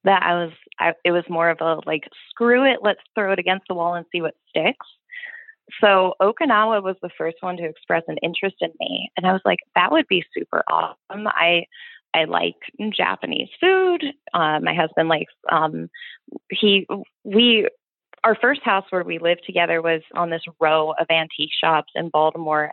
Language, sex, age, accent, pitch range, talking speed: English, female, 20-39, American, 165-210 Hz, 185 wpm